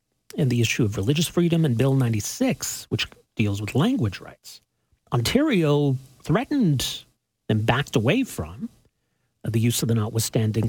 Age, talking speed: 40-59, 140 wpm